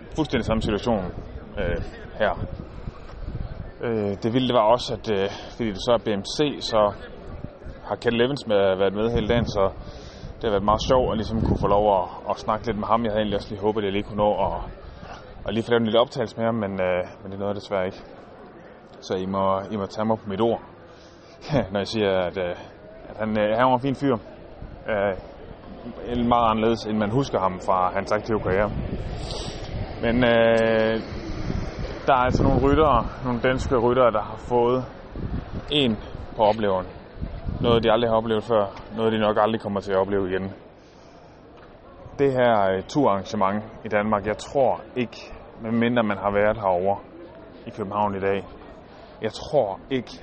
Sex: male